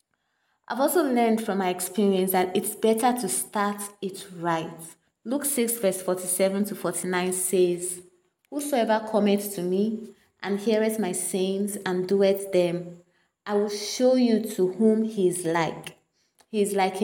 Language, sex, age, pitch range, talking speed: English, female, 20-39, 180-220 Hz, 150 wpm